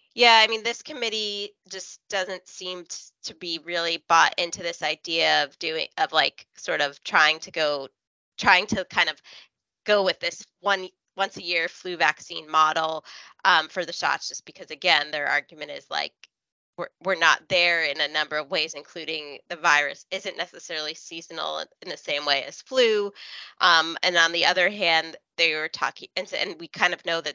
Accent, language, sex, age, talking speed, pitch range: American, English, female, 20-39, 185 wpm, 160-190 Hz